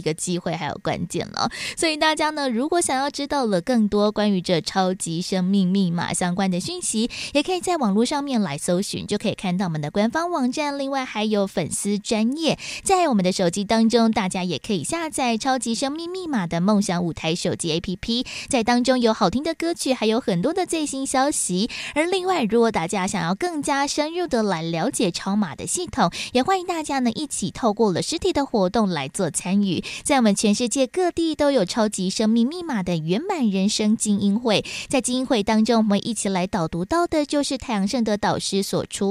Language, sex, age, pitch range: Chinese, female, 20-39, 190-275 Hz